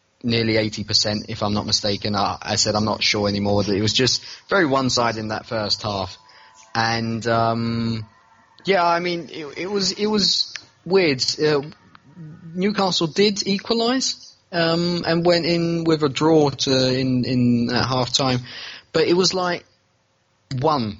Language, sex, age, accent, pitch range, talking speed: English, male, 30-49, British, 110-160 Hz, 160 wpm